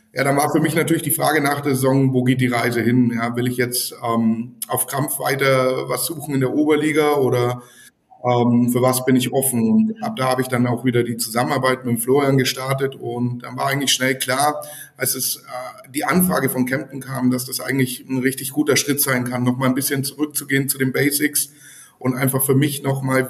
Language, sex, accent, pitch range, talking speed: German, male, German, 125-145 Hz, 215 wpm